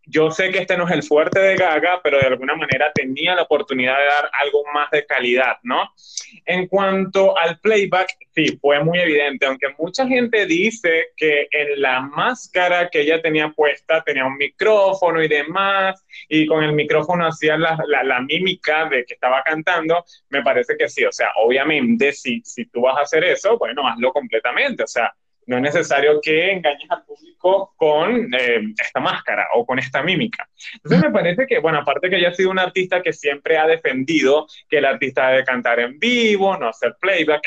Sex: male